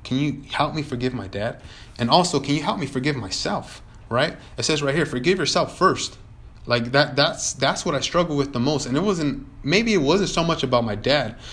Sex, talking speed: male, 230 wpm